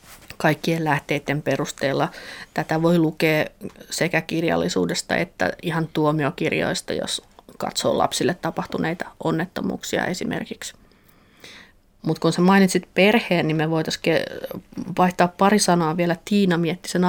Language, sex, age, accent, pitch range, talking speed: Finnish, female, 30-49, native, 155-190 Hz, 110 wpm